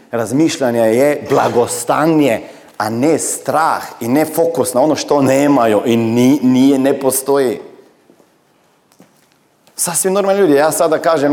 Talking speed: 120 wpm